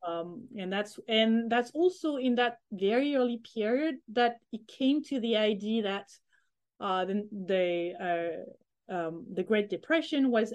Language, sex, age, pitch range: English, female, 30-49, 195-250 Hz